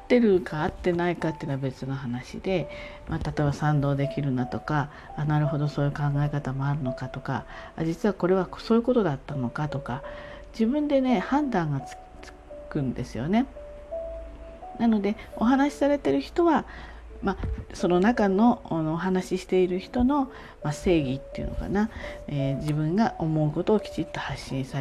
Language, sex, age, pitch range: Japanese, female, 40-59, 140-195 Hz